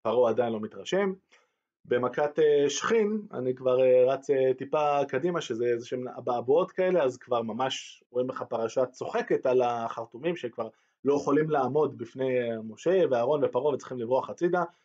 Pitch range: 125-175 Hz